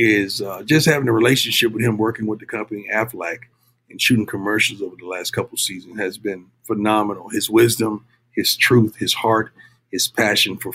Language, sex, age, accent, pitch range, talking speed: English, male, 50-69, American, 115-155 Hz, 190 wpm